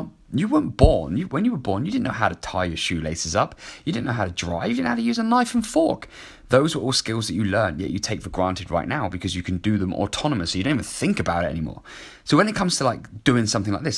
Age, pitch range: 20-39, 100-135 Hz